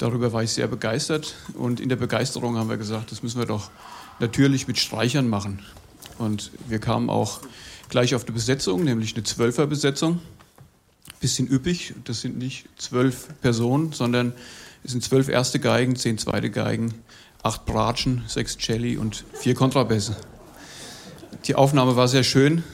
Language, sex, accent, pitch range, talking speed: German, male, German, 115-140 Hz, 155 wpm